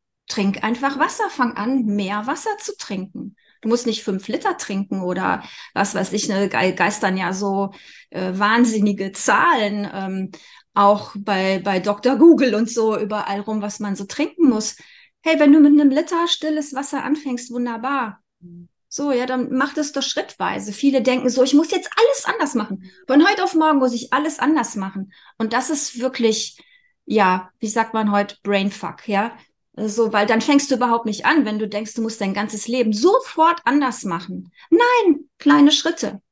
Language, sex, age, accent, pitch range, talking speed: German, female, 30-49, German, 210-285 Hz, 180 wpm